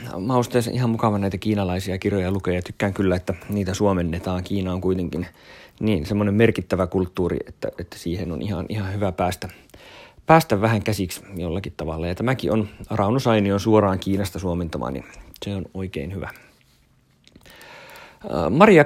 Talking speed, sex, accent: 145 wpm, male, native